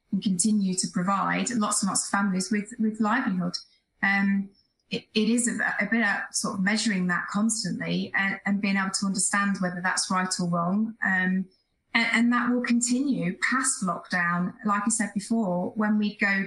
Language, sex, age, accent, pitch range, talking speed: English, female, 20-39, British, 190-225 Hz, 180 wpm